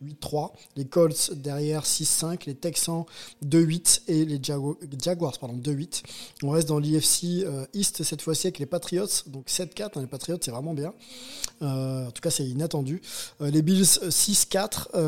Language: French